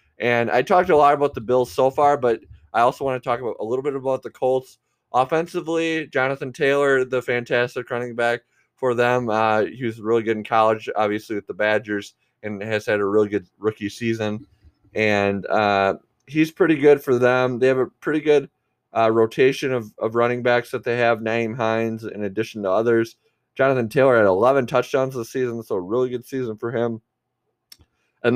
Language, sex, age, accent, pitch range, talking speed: English, male, 20-39, American, 105-130 Hz, 195 wpm